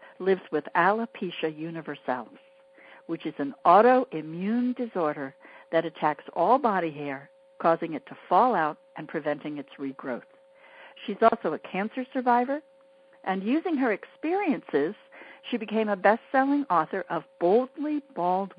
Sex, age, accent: female, 60-79, American